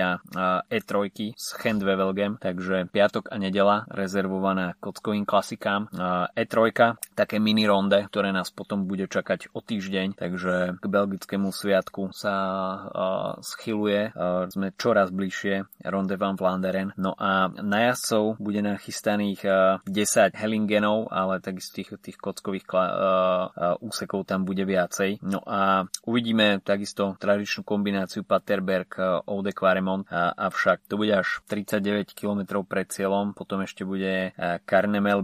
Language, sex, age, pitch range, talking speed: Slovak, male, 20-39, 95-100 Hz, 120 wpm